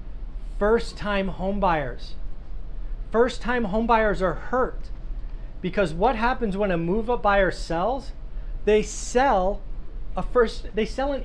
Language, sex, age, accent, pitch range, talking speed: English, male, 40-59, American, 155-215 Hz, 110 wpm